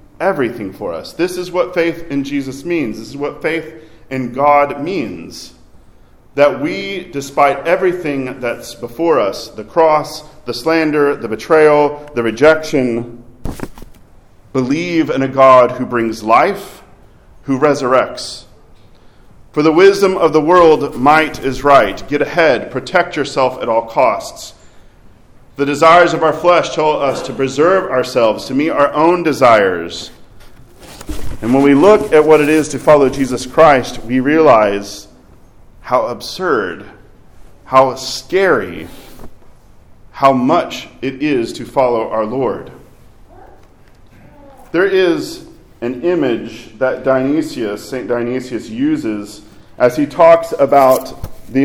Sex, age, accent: male, 40-59, American